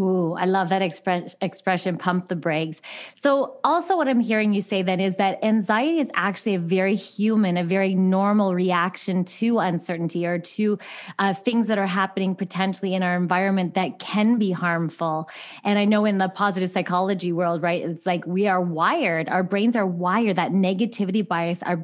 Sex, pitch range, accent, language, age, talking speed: female, 180-215 Hz, American, English, 20-39, 185 wpm